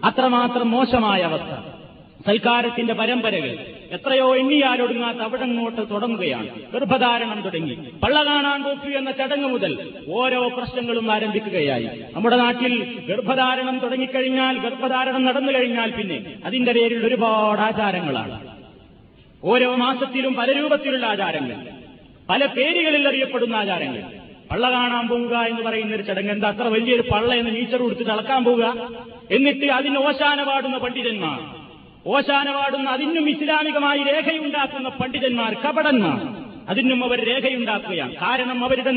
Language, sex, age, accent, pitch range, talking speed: Malayalam, male, 30-49, native, 235-270 Hz, 100 wpm